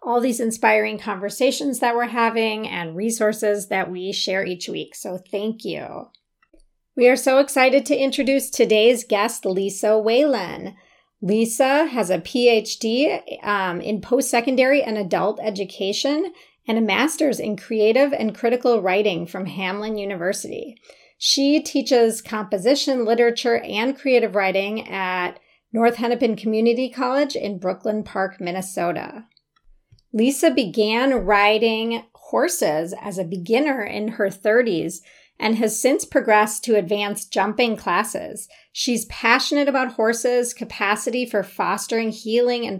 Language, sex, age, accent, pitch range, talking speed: English, female, 30-49, American, 205-250 Hz, 130 wpm